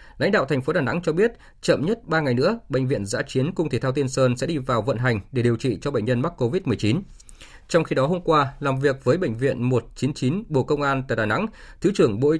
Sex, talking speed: male, 270 wpm